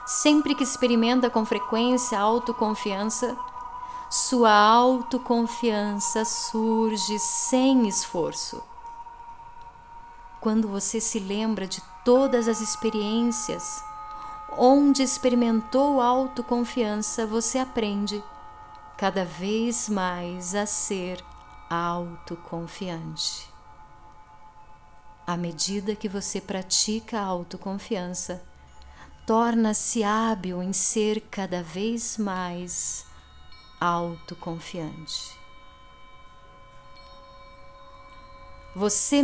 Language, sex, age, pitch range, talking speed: Portuguese, female, 30-49, 175-245 Hz, 70 wpm